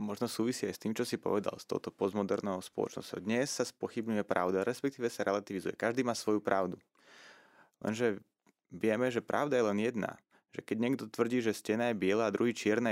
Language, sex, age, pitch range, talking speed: Slovak, male, 30-49, 105-125 Hz, 190 wpm